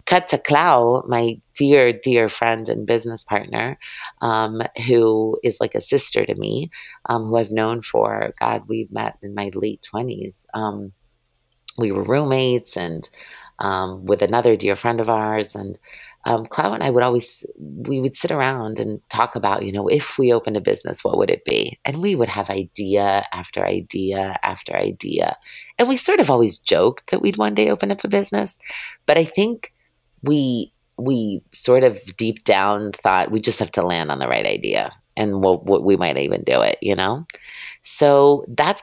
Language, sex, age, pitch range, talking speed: English, female, 30-49, 100-125 Hz, 185 wpm